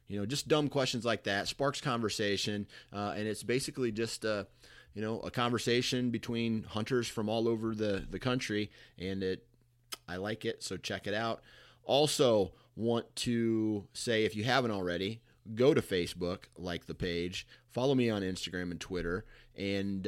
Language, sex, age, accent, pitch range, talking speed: English, male, 30-49, American, 100-120 Hz, 170 wpm